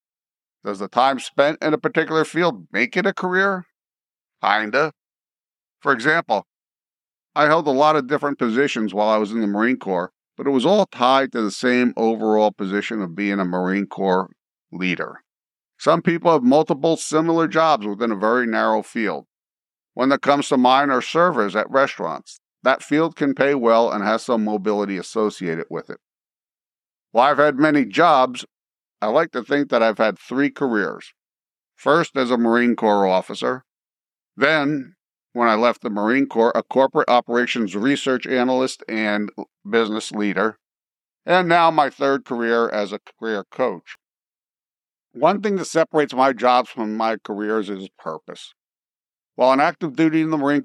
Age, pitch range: 50-69, 105-145 Hz